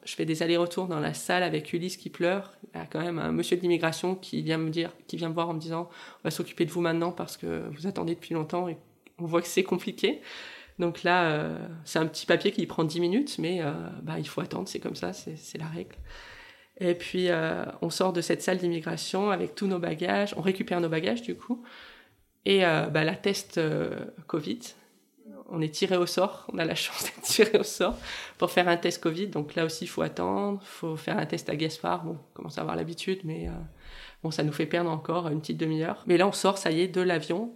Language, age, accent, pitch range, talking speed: French, 20-39, French, 165-190 Hz, 250 wpm